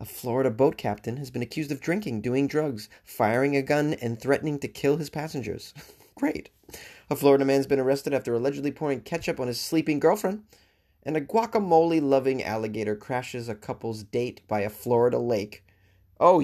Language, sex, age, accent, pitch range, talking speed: English, male, 30-49, American, 110-150 Hz, 170 wpm